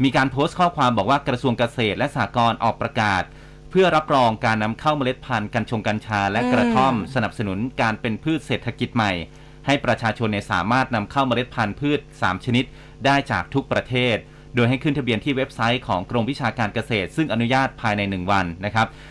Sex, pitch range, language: male, 110-135 Hz, Thai